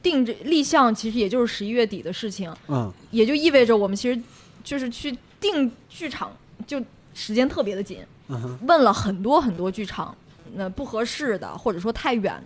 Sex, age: female, 20-39